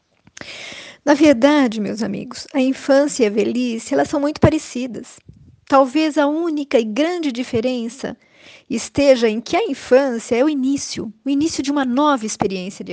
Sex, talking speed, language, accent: female, 155 wpm, Portuguese, Brazilian